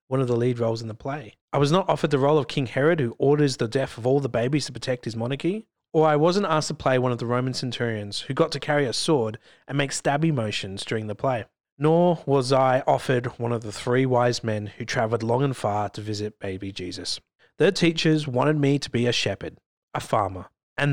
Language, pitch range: English, 110-150 Hz